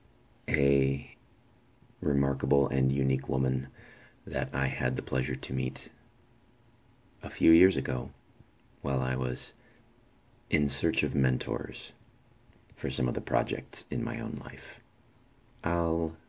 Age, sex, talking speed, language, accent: 40-59, male, 120 wpm, English, American